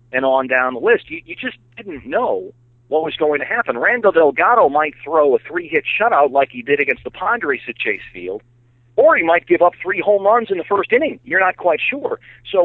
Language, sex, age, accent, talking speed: English, male, 40-59, American, 230 wpm